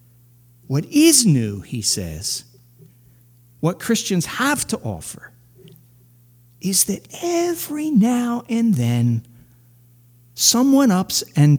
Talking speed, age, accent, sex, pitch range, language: 100 wpm, 50-69, American, male, 120-190 Hz, English